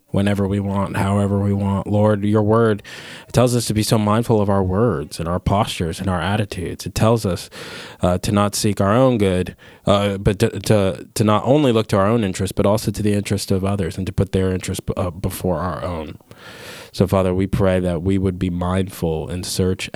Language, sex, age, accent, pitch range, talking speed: English, male, 20-39, American, 95-110 Hz, 220 wpm